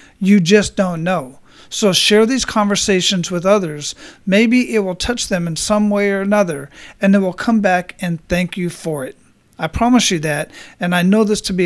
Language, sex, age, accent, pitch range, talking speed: English, male, 40-59, American, 170-200 Hz, 205 wpm